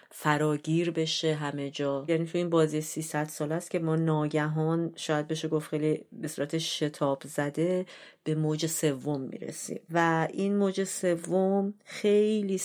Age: 30-49